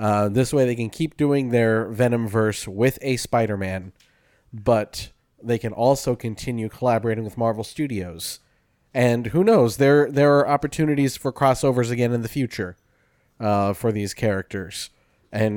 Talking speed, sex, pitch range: 150 wpm, male, 110-135 Hz